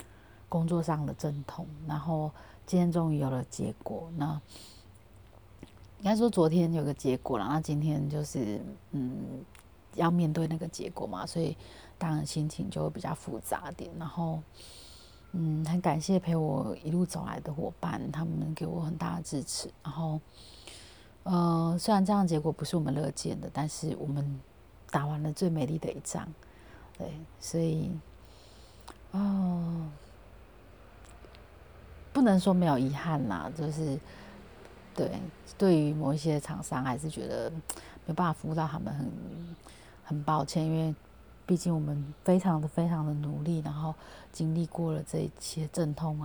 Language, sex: Chinese, female